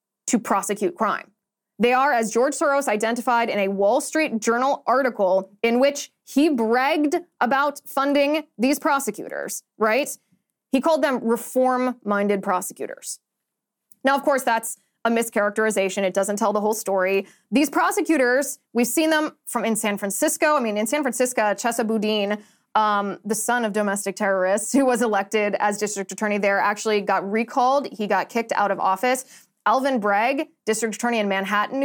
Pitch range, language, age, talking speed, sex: 210-270 Hz, English, 20-39, 160 wpm, female